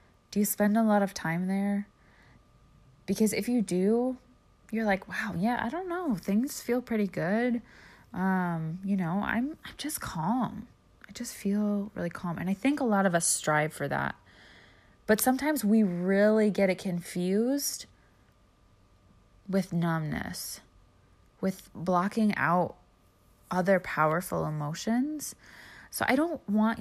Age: 20-39